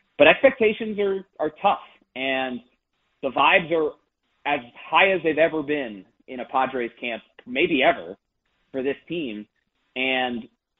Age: 30-49